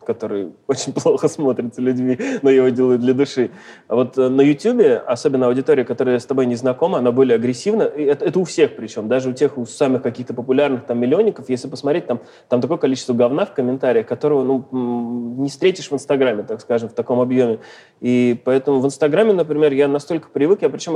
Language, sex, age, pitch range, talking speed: Russian, male, 20-39, 120-145 Hz, 195 wpm